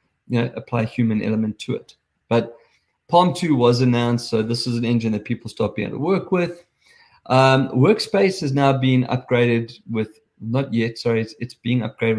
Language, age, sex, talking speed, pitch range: English, 20-39, male, 190 wpm, 110-130 Hz